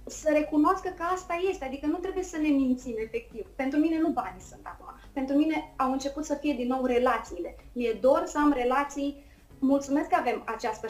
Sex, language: female, Romanian